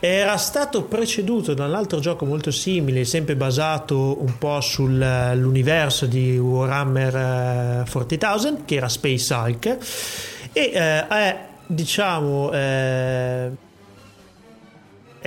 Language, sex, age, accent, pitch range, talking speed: Italian, male, 30-49, native, 125-150 Hz, 100 wpm